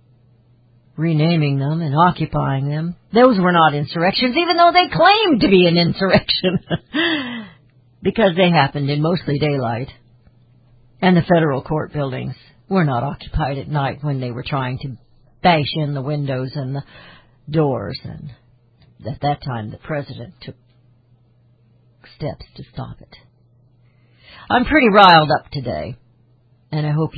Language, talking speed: English, 140 wpm